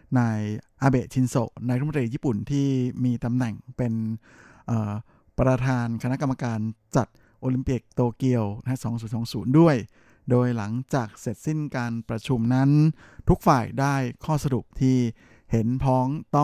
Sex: male